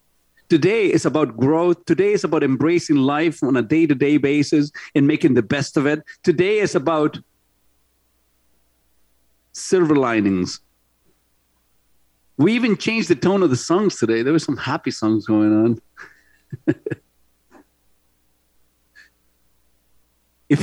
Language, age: English, 50-69